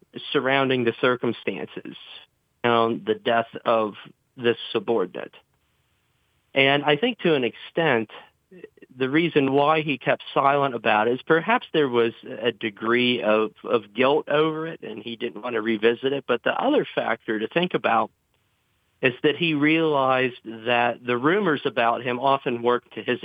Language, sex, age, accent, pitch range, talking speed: English, male, 40-59, American, 120-145 Hz, 155 wpm